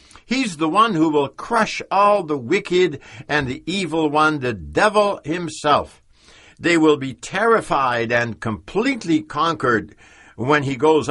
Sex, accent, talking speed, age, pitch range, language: male, American, 140 wpm, 60-79, 115-175 Hz, English